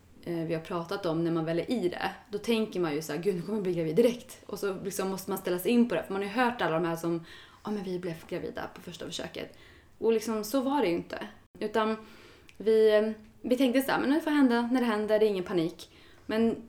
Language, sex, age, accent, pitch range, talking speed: Swedish, female, 20-39, native, 175-245 Hz, 265 wpm